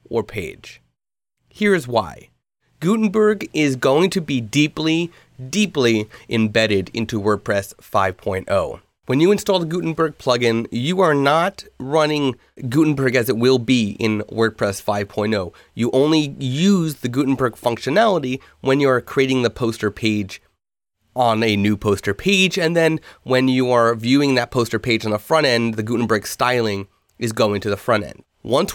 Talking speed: 150 wpm